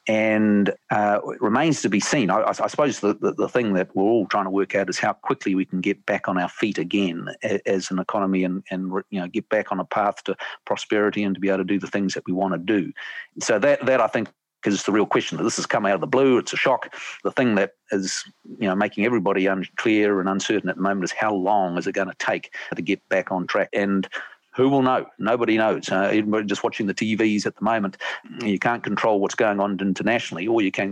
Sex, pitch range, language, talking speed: male, 95-105 Hz, English, 250 wpm